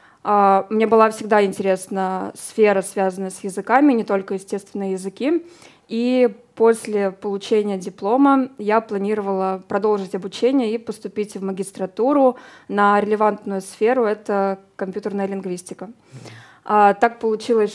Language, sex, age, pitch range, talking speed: Russian, female, 20-39, 195-225 Hz, 110 wpm